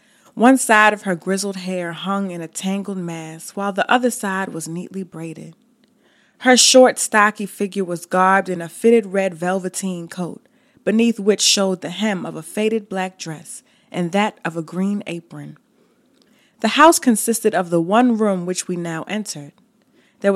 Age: 20-39